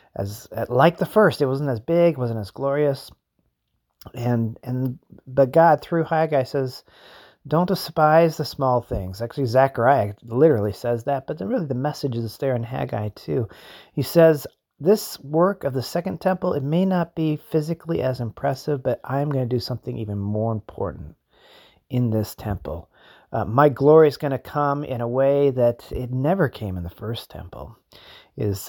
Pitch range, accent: 110-150 Hz, American